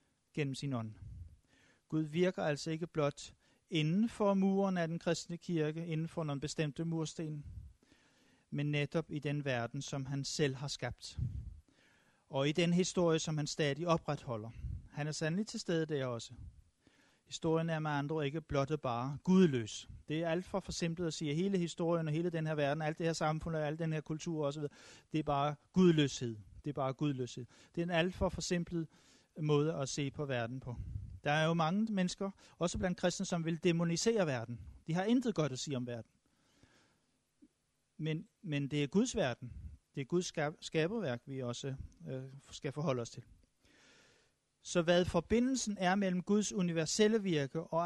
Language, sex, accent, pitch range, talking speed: Danish, male, native, 135-175 Hz, 180 wpm